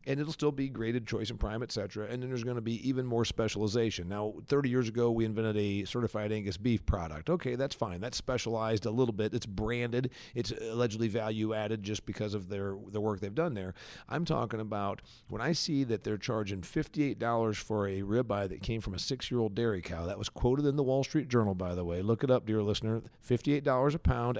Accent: American